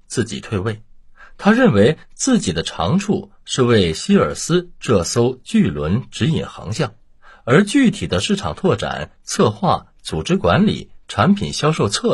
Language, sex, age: Chinese, male, 50-69